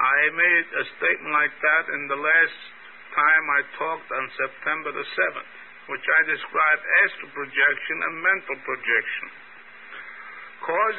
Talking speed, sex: 135 wpm, male